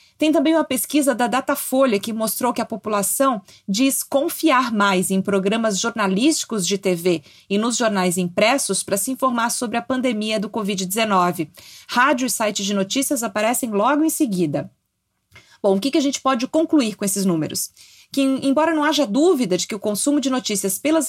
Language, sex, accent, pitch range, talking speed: Portuguese, female, Brazilian, 195-265 Hz, 175 wpm